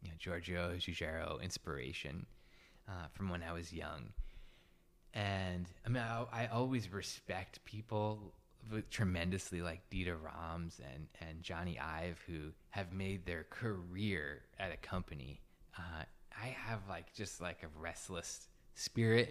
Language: English